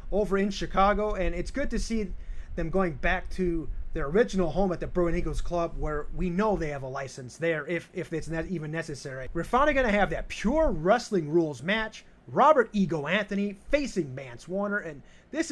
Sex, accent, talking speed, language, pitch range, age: male, American, 200 wpm, English, 160-245 Hz, 30-49